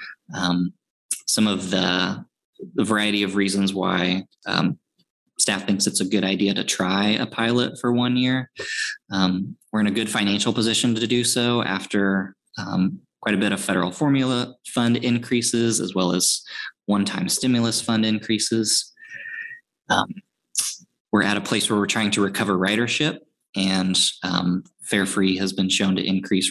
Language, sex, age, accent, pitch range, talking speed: English, male, 20-39, American, 95-115 Hz, 160 wpm